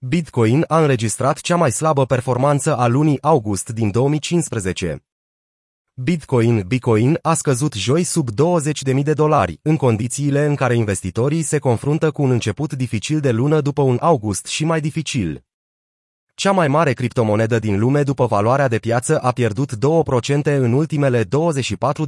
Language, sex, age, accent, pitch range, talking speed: Romanian, male, 30-49, native, 120-155 Hz, 150 wpm